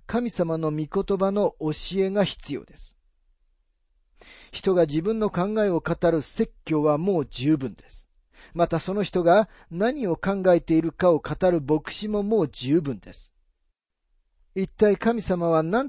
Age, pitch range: 40-59, 145-195 Hz